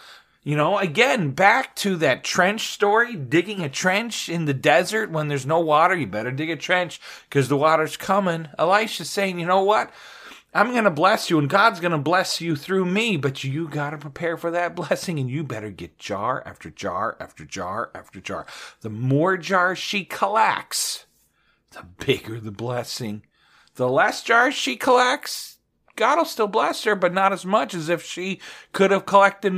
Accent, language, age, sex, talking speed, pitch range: American, English, 40-59, male, 190 wpm, 140-195 Hz